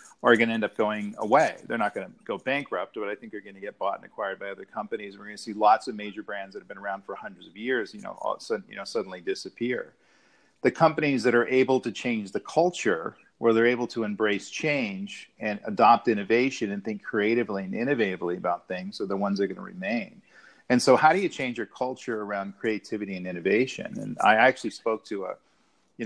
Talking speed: 240 wpm